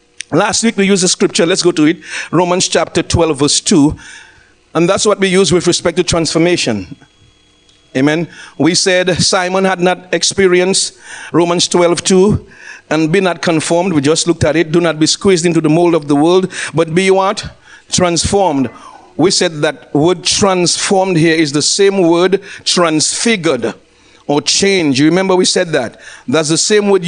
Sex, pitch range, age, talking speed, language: male, 170-200 Hz, 50-69, 175 wpm, English